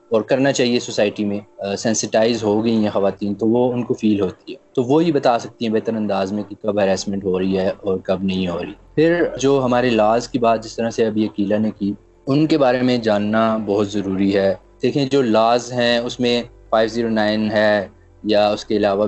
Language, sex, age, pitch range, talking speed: Urdu, male, 20-39, 100-115 Hz, 220 wpm